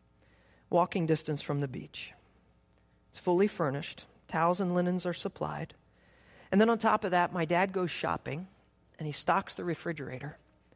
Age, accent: 40-59, American